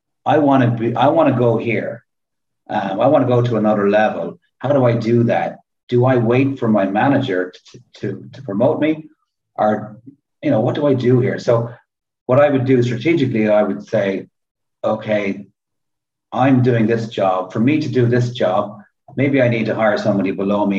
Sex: male